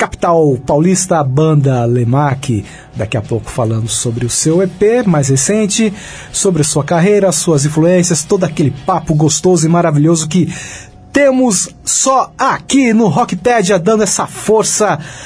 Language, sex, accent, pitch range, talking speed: Portuguese, male, Brazilian, 140-180 Hz, 140 wpm